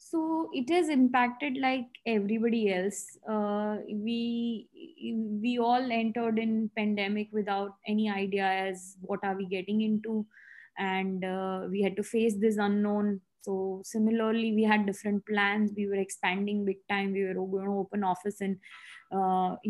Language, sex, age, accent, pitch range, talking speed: English, female, 20-39, Indian, 195-220 Hz, 155 wpm